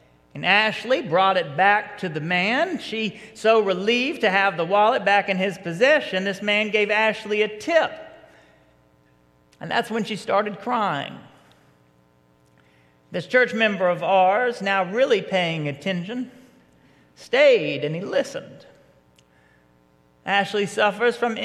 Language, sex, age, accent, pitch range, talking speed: English, male, 40-59, American, 160-230 Hz, 130 wpm